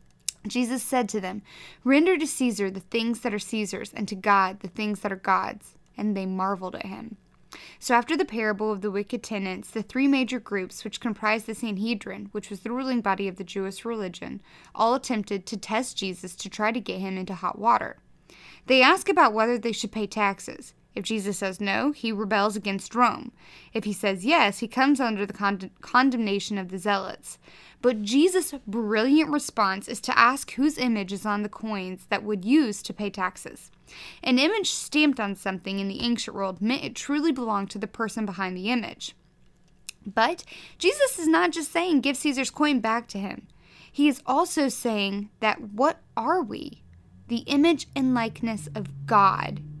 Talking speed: 185 wpm